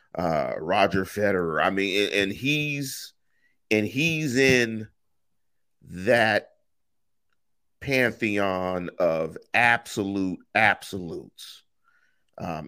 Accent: American